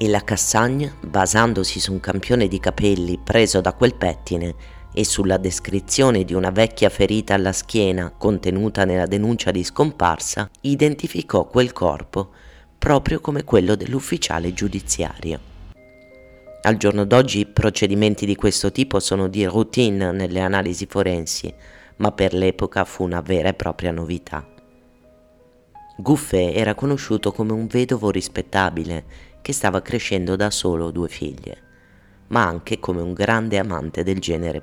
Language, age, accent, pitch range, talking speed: Italian, 30-49, native, 90-110 Hz, 140 wpm